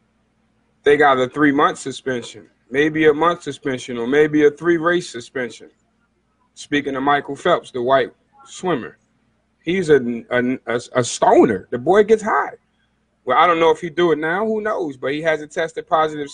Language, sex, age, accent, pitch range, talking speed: English, male, 40-59, American, 140-185 Hz, 170 wpm